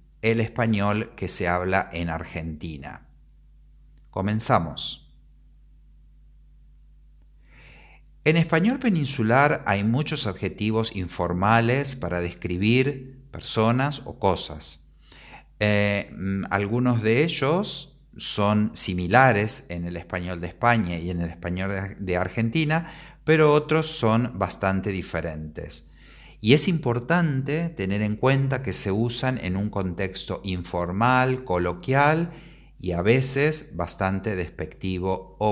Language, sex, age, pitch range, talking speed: Spanish, male, 50-69, 90-130 Hz, 105 wpm